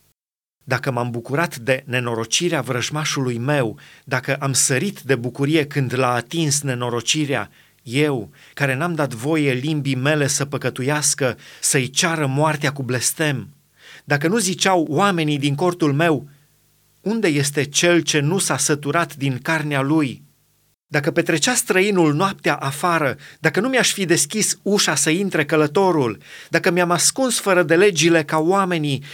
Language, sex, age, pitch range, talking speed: Romanian, male, 30-49, 140-175 Hz, 140 wpm